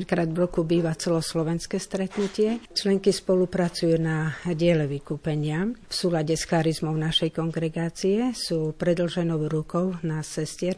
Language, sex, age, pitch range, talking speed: Slovak, female, 50-69, 160-180 Hz, 120 wpm